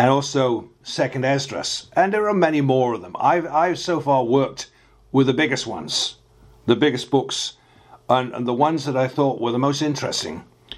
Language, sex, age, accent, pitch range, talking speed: English, male, 50-69, British, 125-155 Hz, 190 wpm